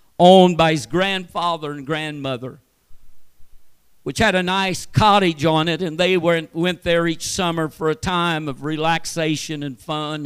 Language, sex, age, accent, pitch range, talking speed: English, male, 50-69, American, 145-200 Hz, 160 wpm